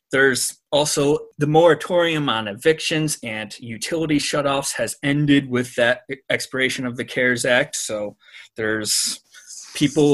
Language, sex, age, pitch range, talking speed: English, male, 30-49, 120-150 Hz, 125 wpm